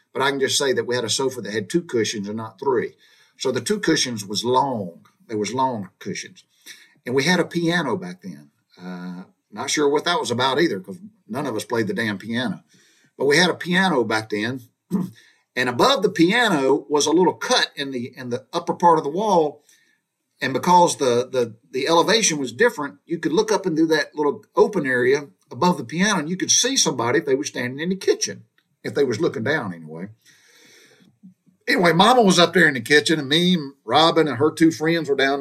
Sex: male